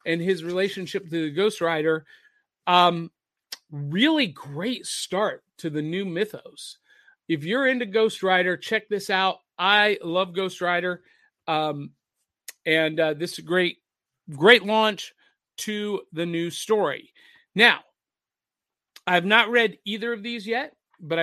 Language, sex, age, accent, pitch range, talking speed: English, male, 50-69, American, 165-220 Hz, 140 wpm